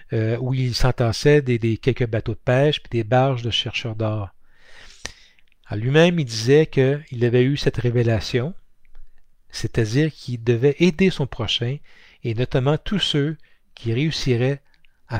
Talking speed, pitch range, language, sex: 145 wpm, 115-145 Hz, French, male